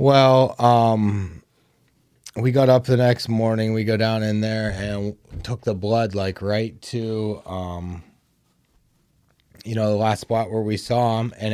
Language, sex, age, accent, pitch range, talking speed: English, male, 20-39, American, 100-125 Hz, 160 wpm